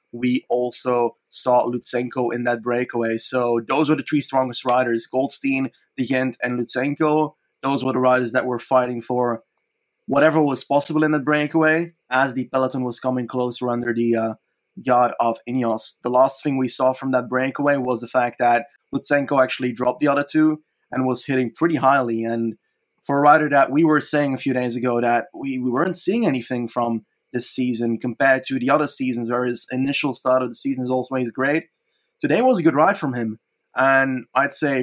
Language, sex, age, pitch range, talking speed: English, male, 20-39, 120-135 Hz, 195 wpm